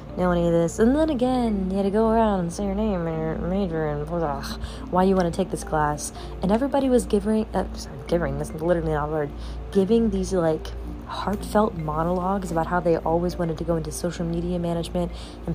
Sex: female